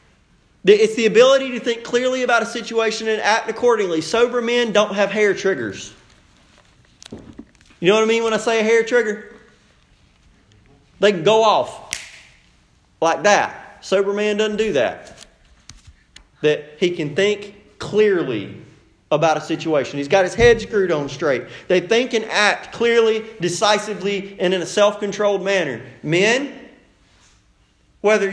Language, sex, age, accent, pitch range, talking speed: English, male, 30-49, American, 175-235 Hz, 145 wpm